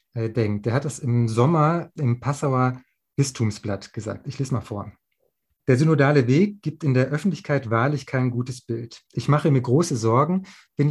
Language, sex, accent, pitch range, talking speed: German, male, German, 120-145 Hz, 165 wpm